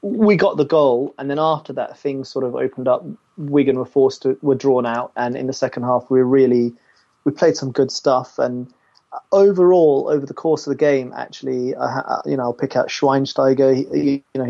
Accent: British